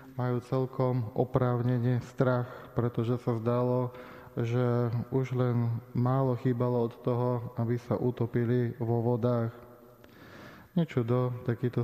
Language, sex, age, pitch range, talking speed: Slovak, male, 20-39, 120-130 Hz, 105 wpm